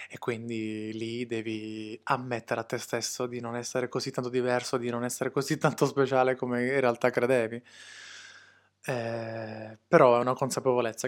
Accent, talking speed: native, 155 wpm